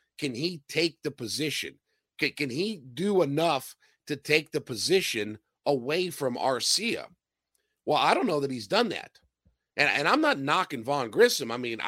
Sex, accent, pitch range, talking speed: male, American, 125-170 Hz, 170 wpm